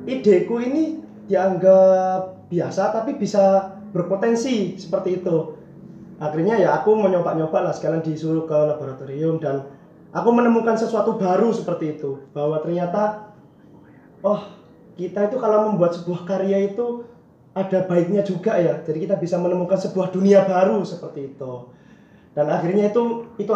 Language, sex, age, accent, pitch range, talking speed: Indonesian, male, 20-39, native, 165-200 Hz, 130 wpm